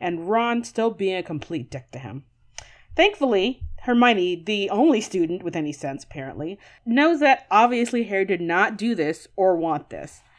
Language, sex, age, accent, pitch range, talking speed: English, female, 30-49, American, 175-275 Hz, 170 wpm